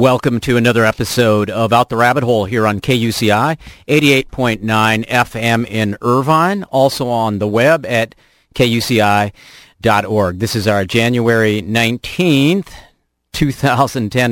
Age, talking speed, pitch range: 40-59, 115 wpm, 115-140 Hz